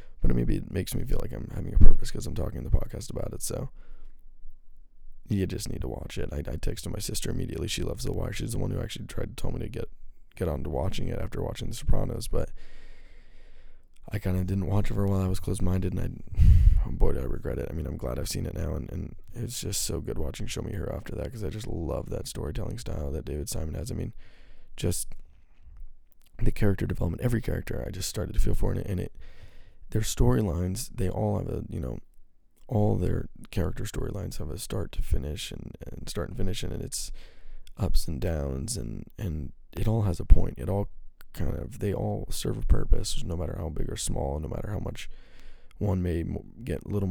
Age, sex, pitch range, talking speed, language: 20-39, male, 80-110 Hz, 240 wpm, English